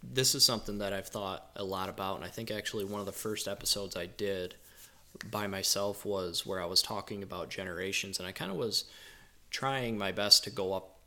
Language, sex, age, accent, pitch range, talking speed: English, male, 20-39, American, 95-110 Hz, 215 wpm